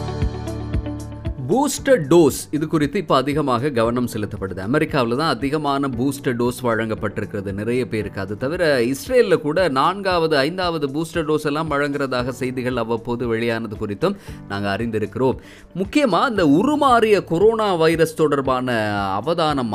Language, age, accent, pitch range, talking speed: Tamil, 20-39, native, 110-155 Hz, 120 wpm